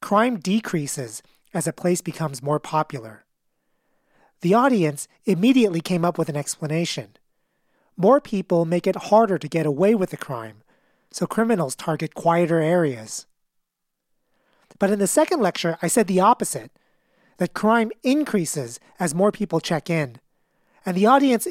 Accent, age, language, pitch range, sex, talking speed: American, 30-49, English, 155-215 Hz, male, 145 wpm